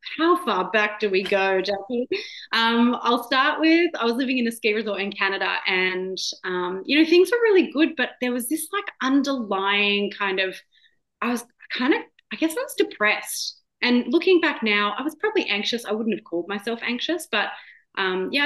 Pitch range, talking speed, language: 185-275 Hz, 200 wpm, English